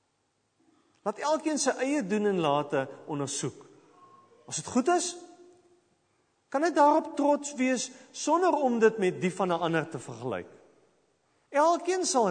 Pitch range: 185-295 Hz